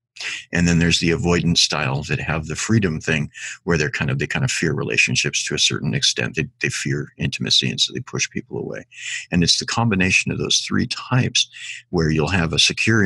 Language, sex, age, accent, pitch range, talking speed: English, male, 50-69, American, 85-115 Hz, 215 wpm